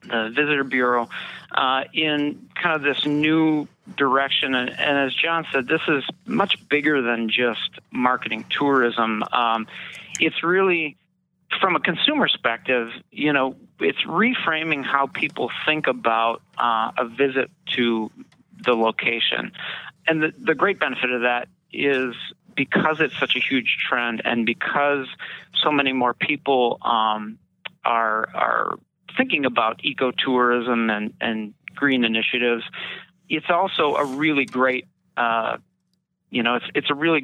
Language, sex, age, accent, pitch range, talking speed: English, male, 40-59, American, 120-155 Hz, 135 wpm